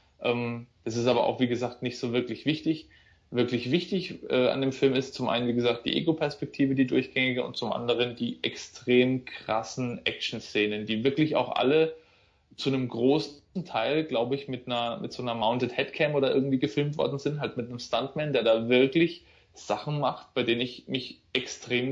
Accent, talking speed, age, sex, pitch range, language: German, 185 wpm, 20-39, male, 120-155 Hz, German